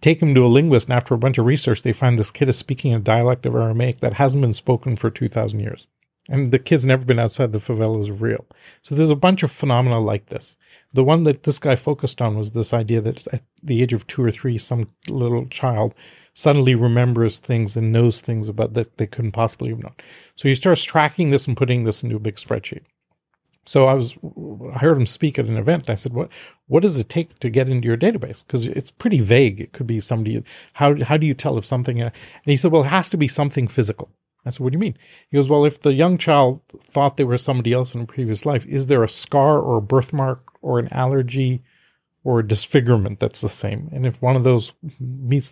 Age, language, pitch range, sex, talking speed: 40-59, English, 115-140 Hz, male, 245 wpm